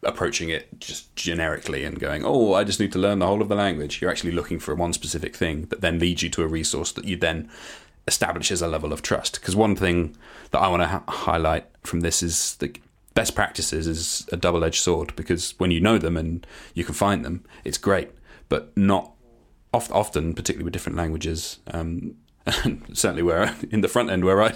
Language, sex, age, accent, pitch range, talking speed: English, male, 30-49, British, 85-95 Hz, 210 wpm